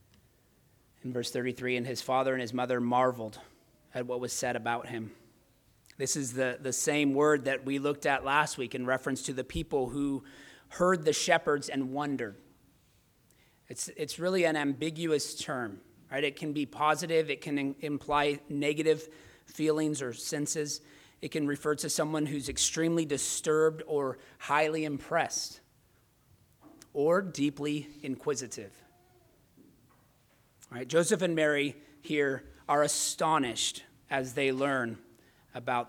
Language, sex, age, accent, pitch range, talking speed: English, male, 30-49, American, 130-155 Hz, 140 wpm